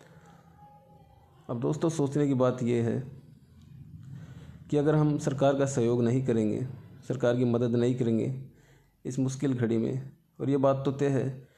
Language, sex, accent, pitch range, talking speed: Hindi, male, native, 115-135 Hz, 155 wpm